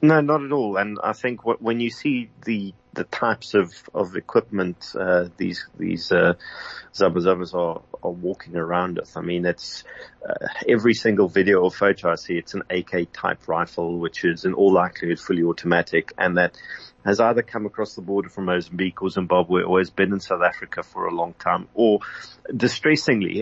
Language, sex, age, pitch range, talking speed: English, male, 30-49, 90-120 Hz, 190 wpm